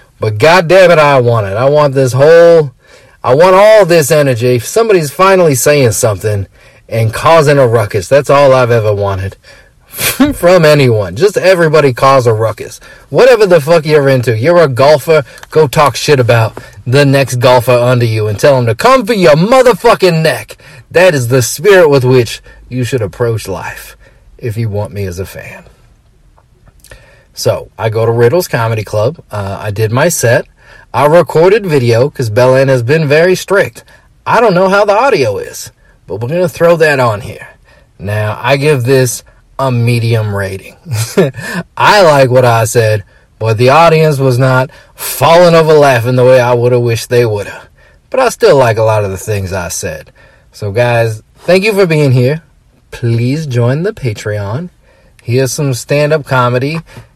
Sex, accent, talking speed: male, American, 180 wpm